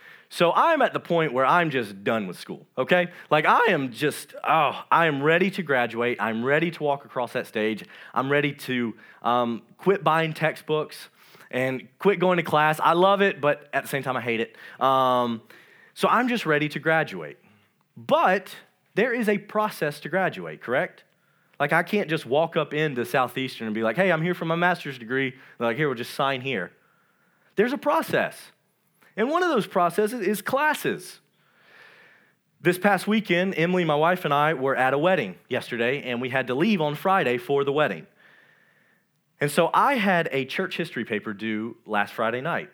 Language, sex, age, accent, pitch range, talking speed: English, male, 30-49, American, 135-190 Hz, 190 wpm